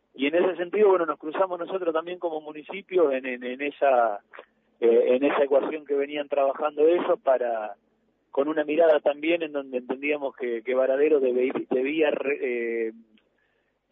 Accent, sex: Argentinian, male